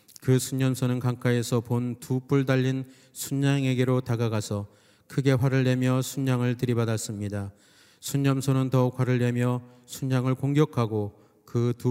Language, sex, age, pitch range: Korean, male, 40-59, 115-135 Hz